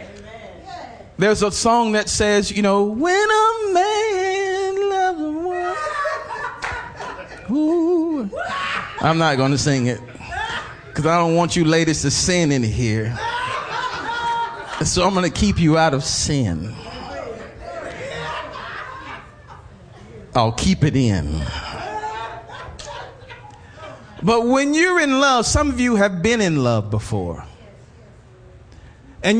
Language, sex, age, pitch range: English, male, 40-59, 145-245 Hz